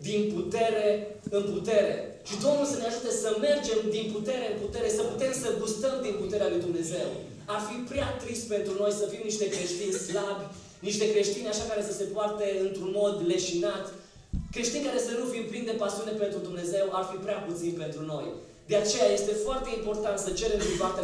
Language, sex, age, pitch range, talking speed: Romanian, male, 20-39, 175-220 Hz, 195 wpm